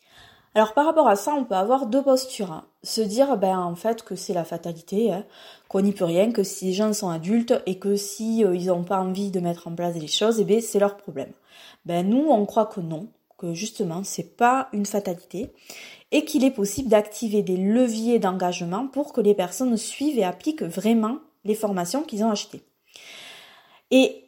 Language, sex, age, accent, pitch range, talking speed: French, female, 20-39, French, 190-245 Hz, 205 wpm